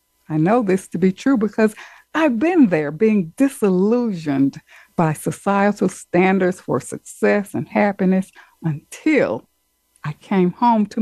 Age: 60-79